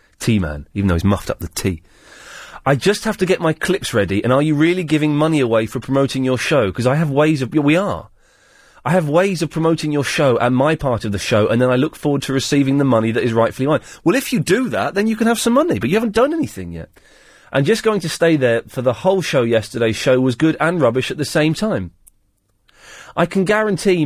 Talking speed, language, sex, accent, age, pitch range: 250 wpm, English, male, British, 30-49, 120-180 Hz